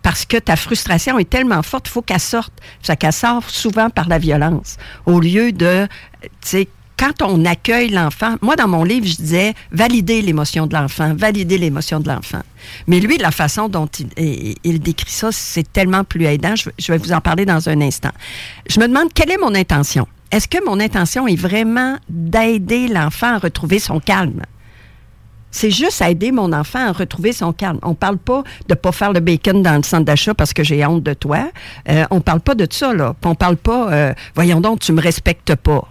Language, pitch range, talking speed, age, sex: French, 150-215 Hz, 210 wpm, 50-69, female